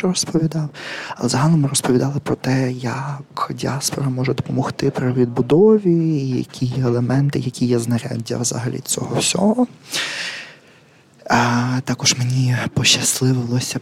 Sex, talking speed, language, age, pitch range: male, 110 wpm, Ukrainian, 20-39, 120-135 Hz